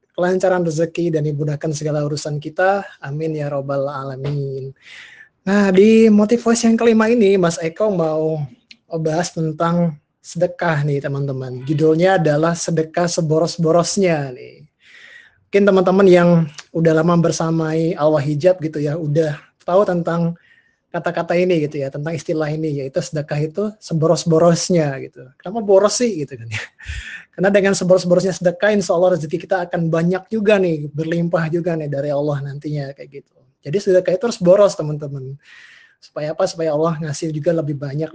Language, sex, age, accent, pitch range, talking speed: Indonesian, male, 20-39, native, 150-180 Hz, 150 wpm